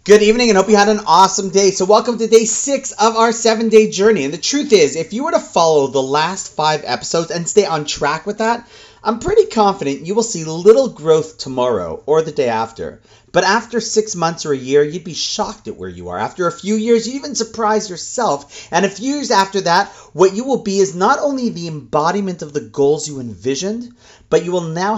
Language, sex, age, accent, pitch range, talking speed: English, male, 30-49, American, 150-220 Hz, 230 wpm